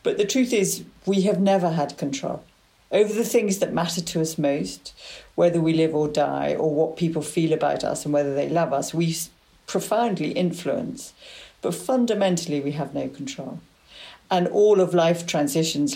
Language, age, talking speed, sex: English, 50-69, 175 wpm, female